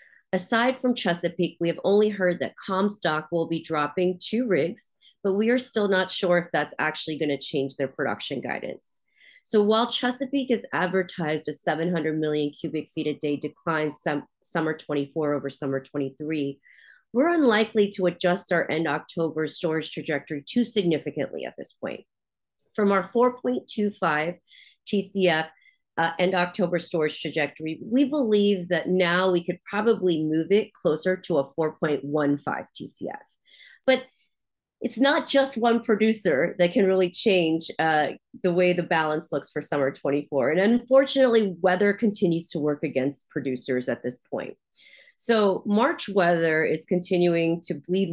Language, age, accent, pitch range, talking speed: English, 40-59, American, 155-205 Hz, 150 wpm